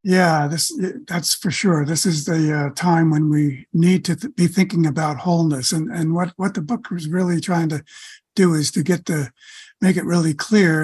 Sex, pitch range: male, 155-190 Hz